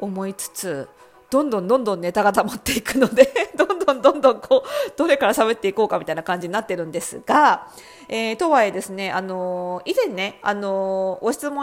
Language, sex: Japanese, female